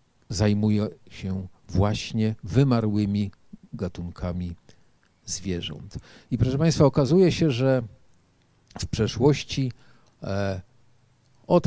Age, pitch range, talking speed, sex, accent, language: 50-69, 90-115 Hz, 75 wpm, male, native, Polish